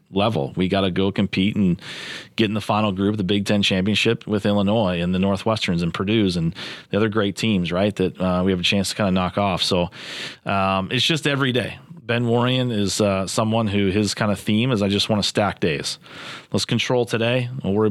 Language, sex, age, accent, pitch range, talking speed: English, male, 30-49, American, 100-120 Hz, 230 wpm